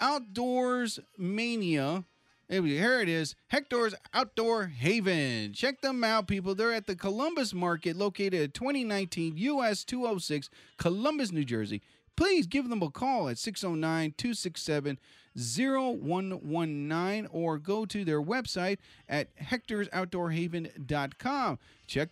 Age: 30-49